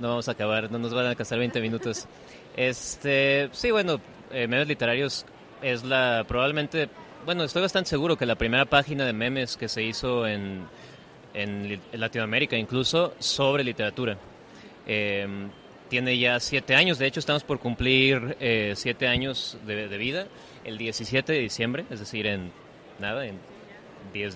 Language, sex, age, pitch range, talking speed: Spanish, male, 30-49, 110-135 Hz, 160 wpm